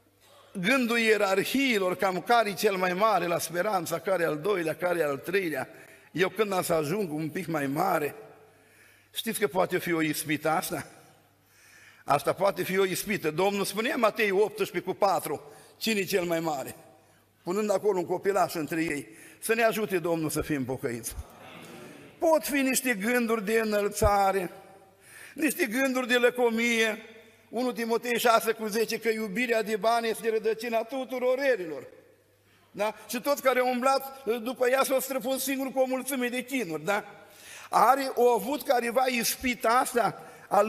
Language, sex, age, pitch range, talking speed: Romanian, male, 50-69, 190-245 Hz, 160 wpm